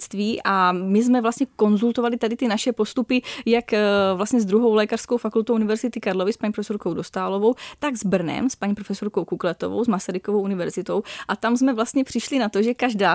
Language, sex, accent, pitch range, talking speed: Czech, female, native, 195-230 Hz, 185 wpm